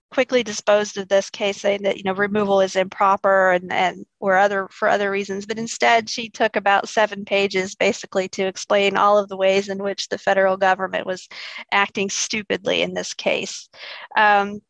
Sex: female